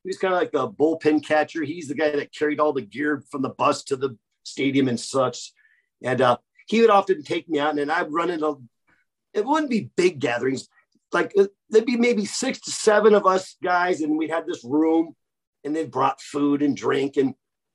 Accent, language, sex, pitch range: American, English, male, 145-220 Hz